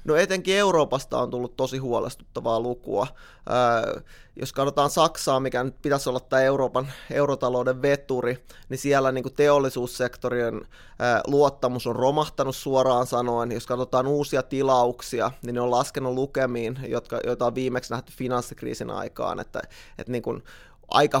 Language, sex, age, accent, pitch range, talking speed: Finnish, male, 20-39, native, 120-130 Hz, 120 wpm